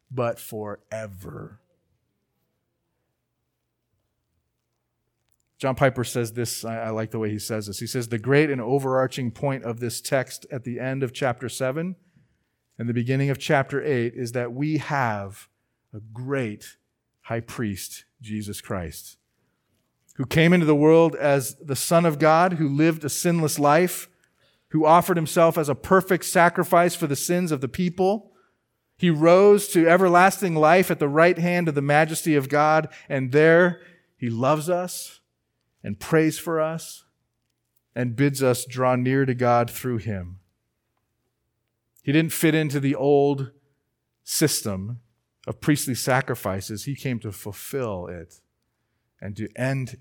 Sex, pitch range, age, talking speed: male, 115-155 Hz, 40-59, 150 wpm